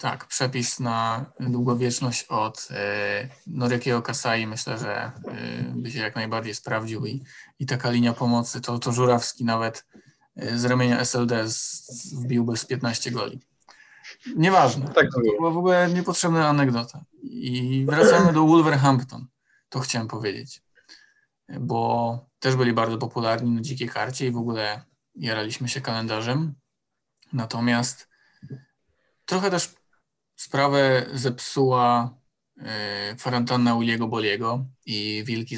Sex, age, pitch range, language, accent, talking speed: male, 20-39, 115-135 Hz, Polish, native, 125 wpm